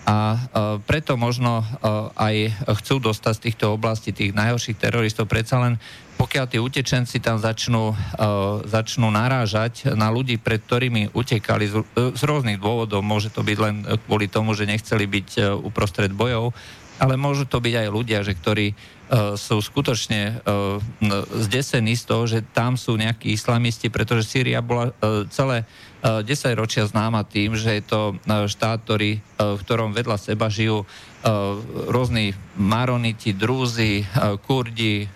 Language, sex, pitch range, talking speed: Slovak, male, 105-120 Hz, 155 wpm